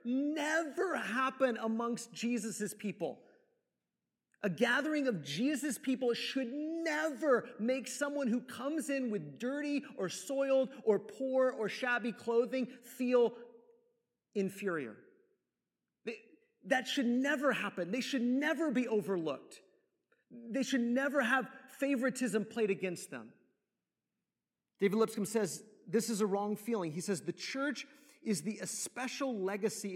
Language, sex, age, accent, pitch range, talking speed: English, male, 30-49, American, 185-260 Hz, 125 wpm